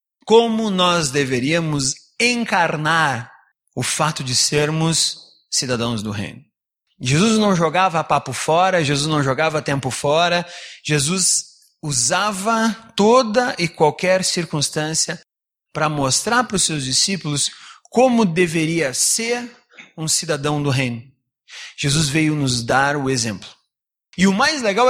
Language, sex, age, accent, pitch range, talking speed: Portuguese, male, 30-49, Brazilian, 150-215 Hz, 120 wpm